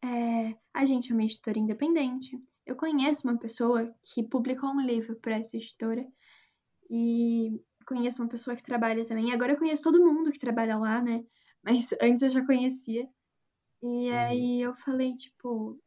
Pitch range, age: 230-275 Hz, 10-29